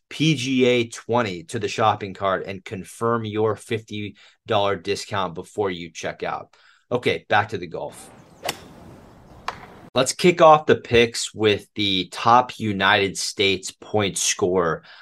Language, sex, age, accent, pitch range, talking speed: English, male, 30-49, American, 95-115 Hz, 130 wpm